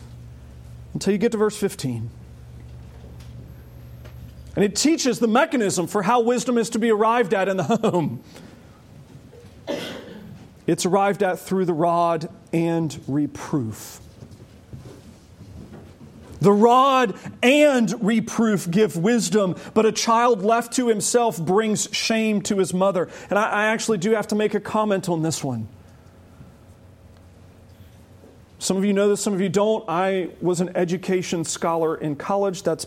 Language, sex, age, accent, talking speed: English, male, 40-59, American, 140 wpm